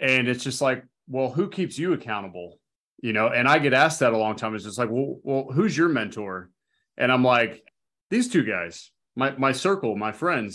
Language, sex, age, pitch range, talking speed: English, male, 30-49, 110-130 Hz, 215 wpm